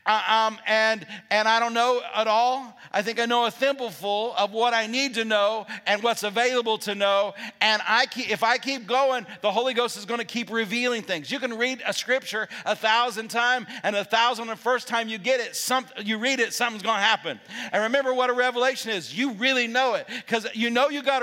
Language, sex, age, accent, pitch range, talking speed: English, male, 50-69, American, 215-250 Hz, 235 wpm